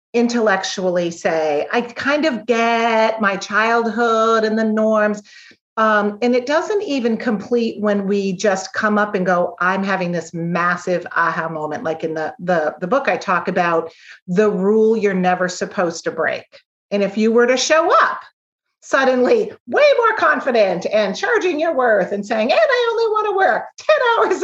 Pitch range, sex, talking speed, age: 190-270 Hz, female, 175 wpm, 40-59